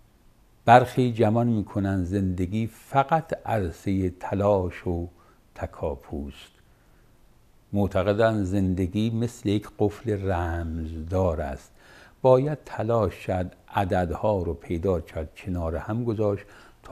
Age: 60-79